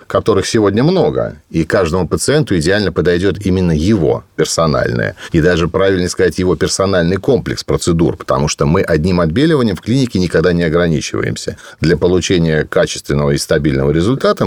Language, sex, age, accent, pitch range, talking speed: Russian, male, 40-59, native, 80-105 Hz, 145 wpm